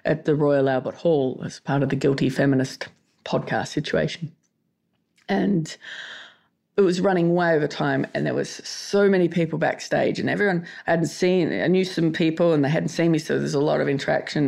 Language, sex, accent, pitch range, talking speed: English, female, Australian, 145-175 Hz, 195 wpm